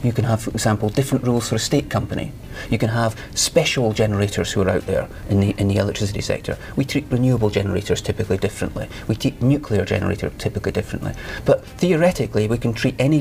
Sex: male